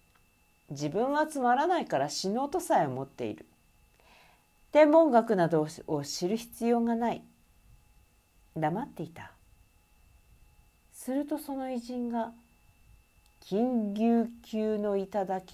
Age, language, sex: 50-69, Japanese, female